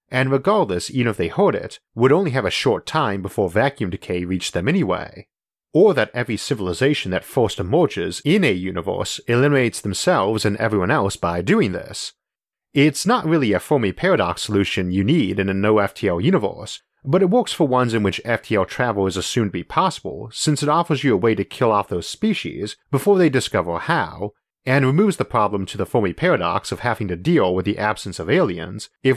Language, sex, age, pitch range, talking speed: English, male, 40-59, 95-140 Hz, 200 wpm